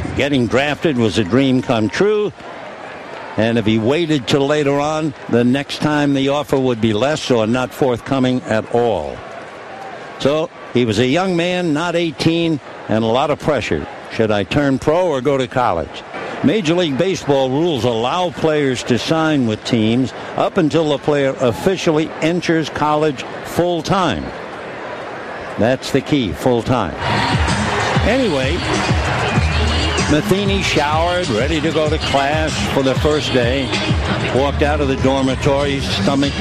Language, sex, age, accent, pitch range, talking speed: English, male, 60-79, American, 120-155 Hz, 145 wpm